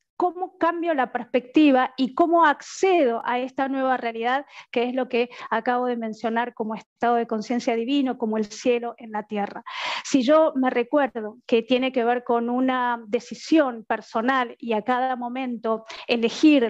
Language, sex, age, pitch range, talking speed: Spanish, female, 40-59, 240-275 Hz, 165 wpm